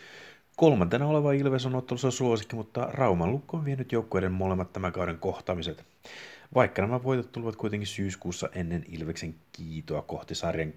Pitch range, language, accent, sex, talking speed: 80-110 Hz, Finnish, native, male, 150 wpm